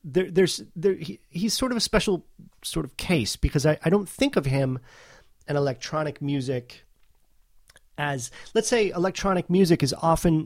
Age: 30-49